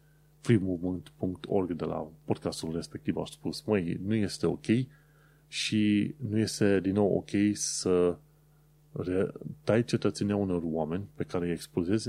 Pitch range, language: 90-140 Hz, Romanian